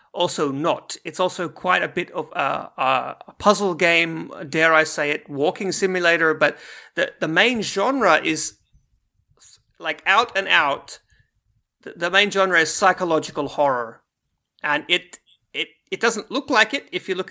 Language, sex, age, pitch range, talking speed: English, male, 30-49, 145-185 Hz, 155 wpm